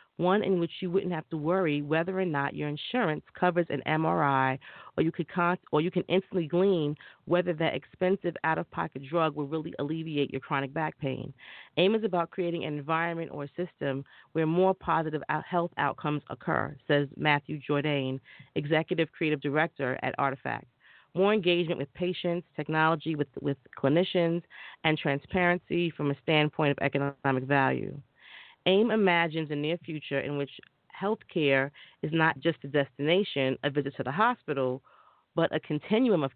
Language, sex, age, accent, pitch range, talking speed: English, female, 40-59, American, 145-180 Hz, 165 wpm